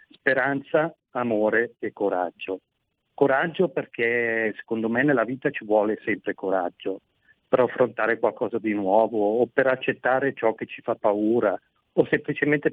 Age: 40-59